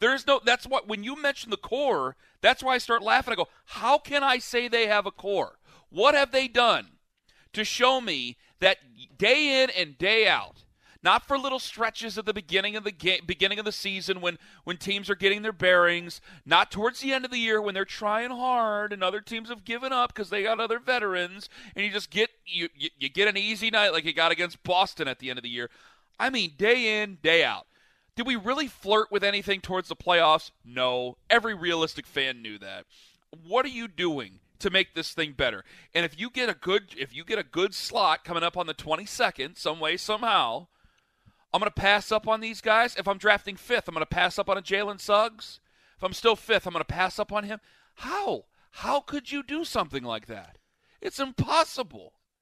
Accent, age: American, 40-59